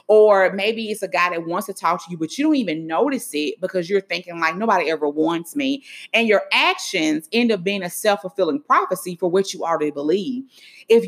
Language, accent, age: English, American, 30-49